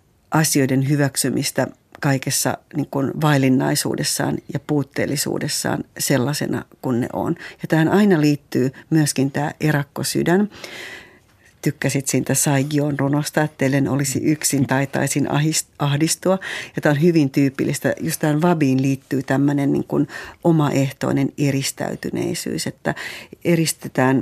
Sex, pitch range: female, 135-155 Hz